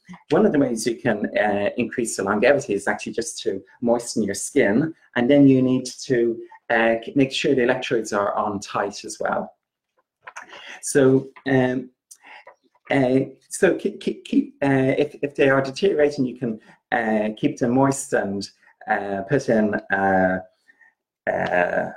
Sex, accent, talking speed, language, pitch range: male, British, 155 wpm, English, 110-140 Hz